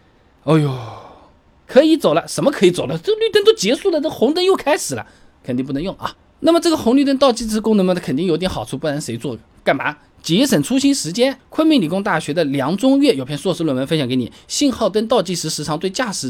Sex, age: male, 20-39